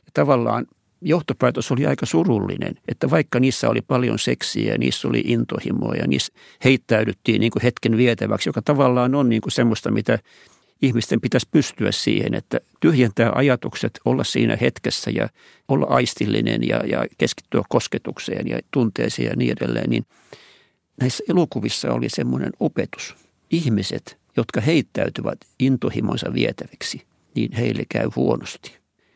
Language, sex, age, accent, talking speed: Finnish, male, 60-79, native, 130 wpm